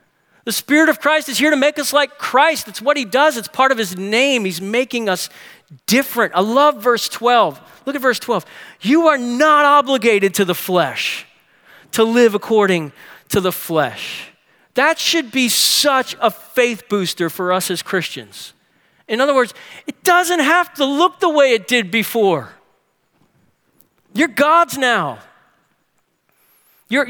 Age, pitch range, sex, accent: 40-59, 200-285 Hz, male, American